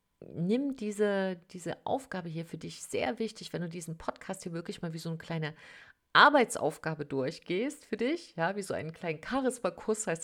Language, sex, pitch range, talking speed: German, female, 150-185 Hz, 180 wpm